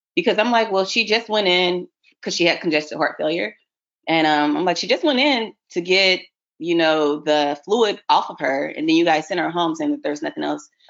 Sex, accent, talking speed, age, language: female, American, 235 wpm, 30-49, English